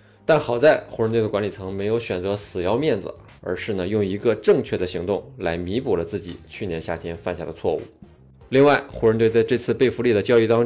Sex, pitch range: male, 90-115 Hz